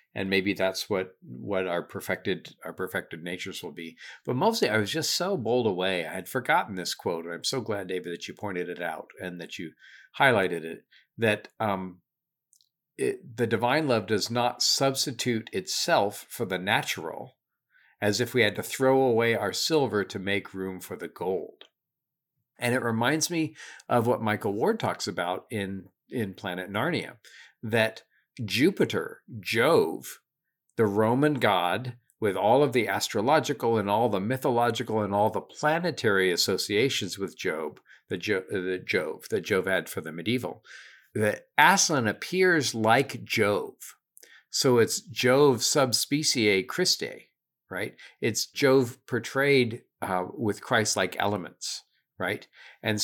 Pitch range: 95-130 Hz